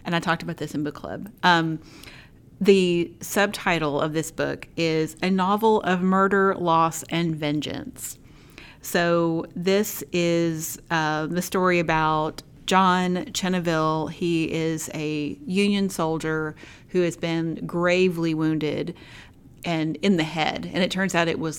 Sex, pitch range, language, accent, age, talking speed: female, 155-180 Hz, English, American, 30-49, 140 wpm